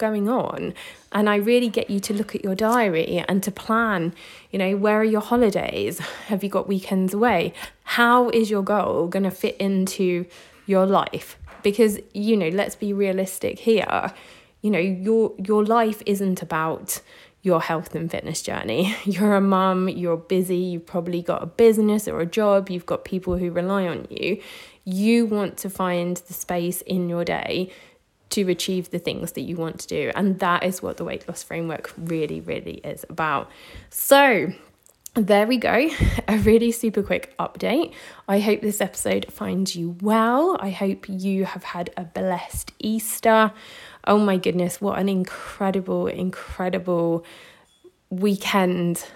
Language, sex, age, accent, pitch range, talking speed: English, female, 20-39, British, 180-215 Hz, 165 wpm